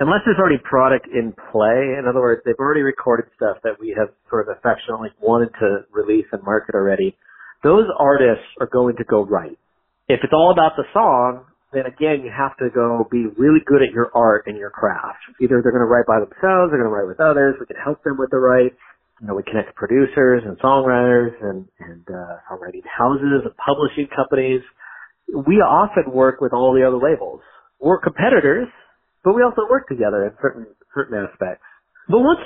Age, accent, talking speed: 40-59, American, 200 wpm